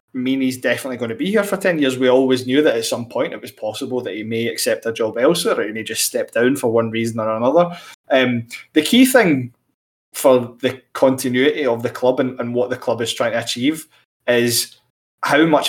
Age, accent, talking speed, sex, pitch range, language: 20-39, British, 225 wpm, male, 125-145 Hz, English